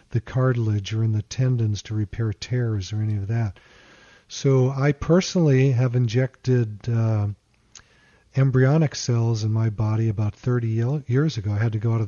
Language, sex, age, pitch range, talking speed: English, male, 40-59, 110-130 Hz, 170 wpm